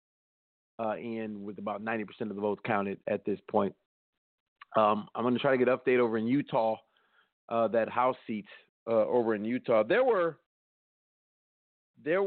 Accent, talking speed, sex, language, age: American, 170 wpm, male, English, 40-59